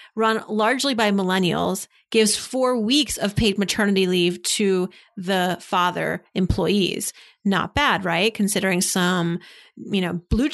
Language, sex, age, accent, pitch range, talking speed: English, female, 30-49, American, 195-235 Hz, 130 wpm